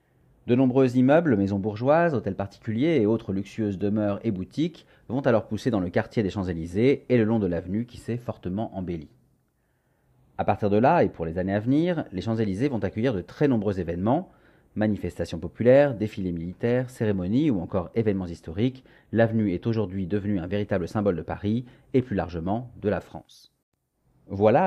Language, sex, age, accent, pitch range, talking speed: French, male, 40-59, French, 95-120 Hz, 180 wpm